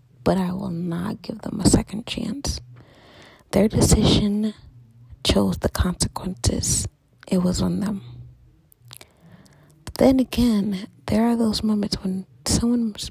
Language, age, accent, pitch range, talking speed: English, 30-49, American, 145-215 Hz, 120 wpm